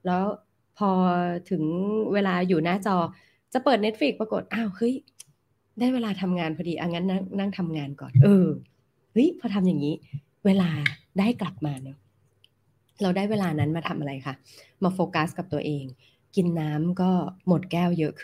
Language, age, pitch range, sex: Thai, 20-39, 145-190 Hz, female